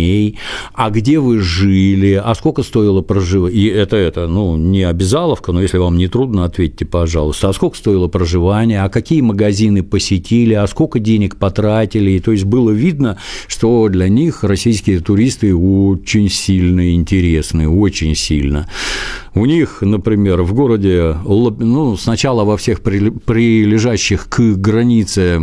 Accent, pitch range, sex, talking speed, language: native, 90-115 Hz, male, 140 wpm, Russian